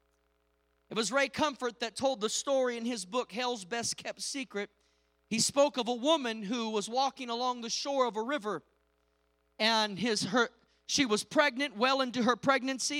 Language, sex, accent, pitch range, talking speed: English, male, American, 220-295 Hz, 180 wpm